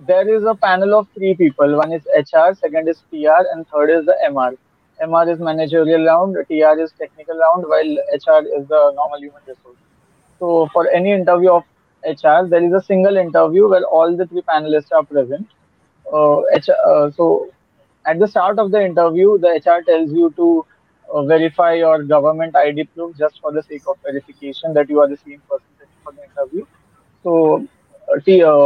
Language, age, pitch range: Hindi, 20-39, 150-190 Hz